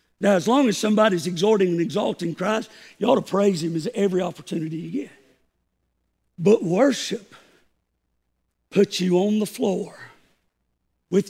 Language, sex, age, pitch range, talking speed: English, male, 60-79, 135-185 Hz, 145 wpm